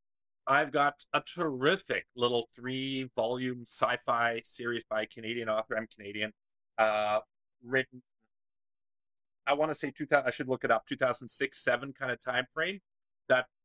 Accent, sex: American, male